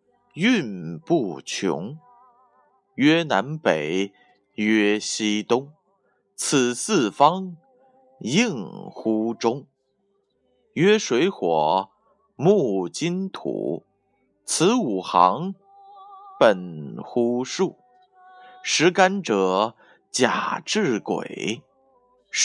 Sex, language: male, Chinese